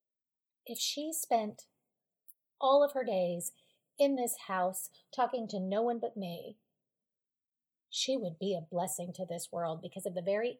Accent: American